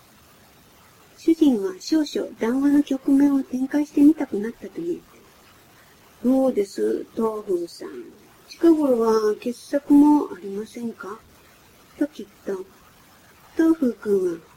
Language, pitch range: Japanese, 235-320 Hz